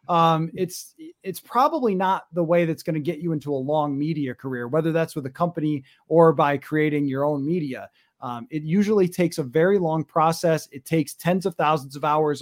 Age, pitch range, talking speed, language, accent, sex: 30-49, 145-180 Hz, 210 wpm, English, American, male